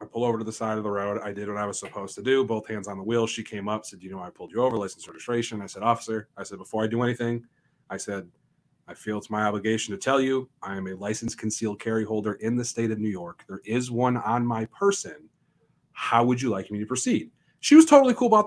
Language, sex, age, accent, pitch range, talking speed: English, male, 30-49, American, 105-135 Hz, 275 wpm